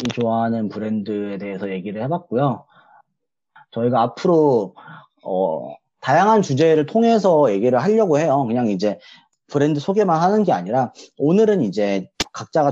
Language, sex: Korean, male